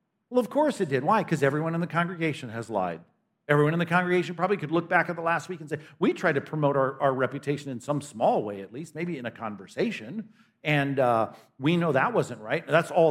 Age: 50-69